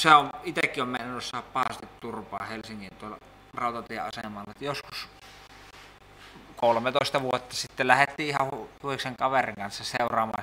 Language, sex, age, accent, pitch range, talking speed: Finnish, male, 20-39, native, 110-130 Hz, 125 wpm